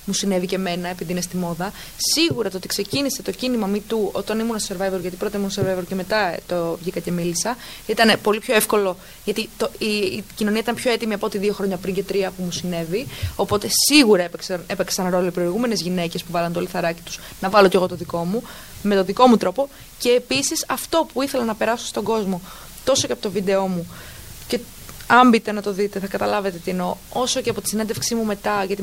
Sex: female